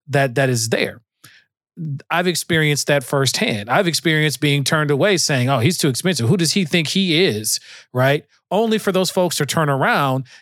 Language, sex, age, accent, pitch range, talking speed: English, male, 40-59, American, 135-175 Hz, 185 wpm